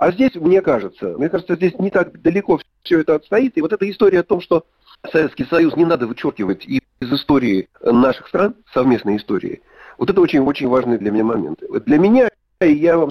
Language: Russian